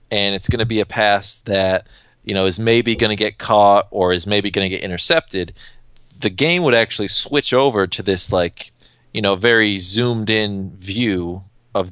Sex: male